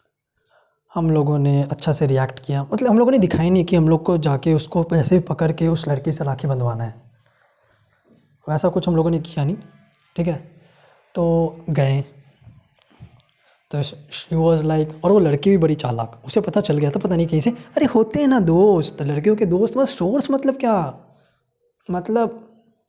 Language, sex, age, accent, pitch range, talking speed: Hindi, male, 20-39, native, 150-200 Hz, 190 wpm